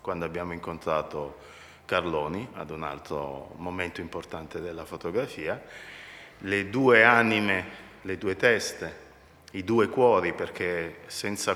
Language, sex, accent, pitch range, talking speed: Italian, male, native, 85-100 Hz, 115 wpm